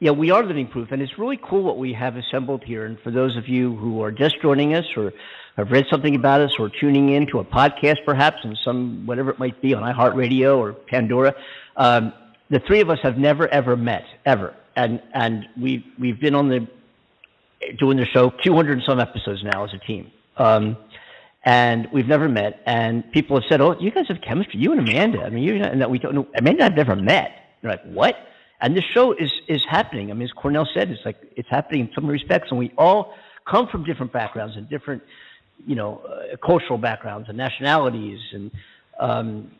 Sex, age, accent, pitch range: male, 50-69, American, 115-145 Hz